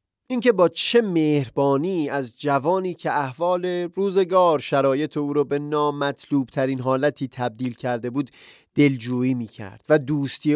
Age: 30-49